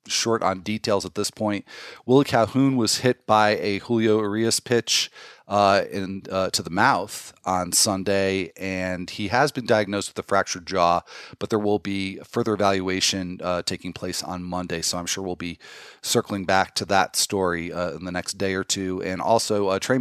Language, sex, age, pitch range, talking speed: English, male, 40-59, 95-120 Hz, 190 wpm